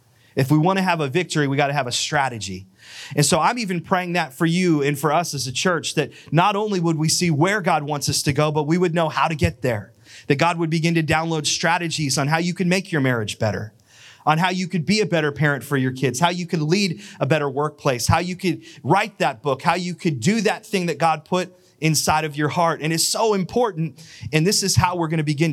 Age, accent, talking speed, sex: 30-49, American, 260 wpm, male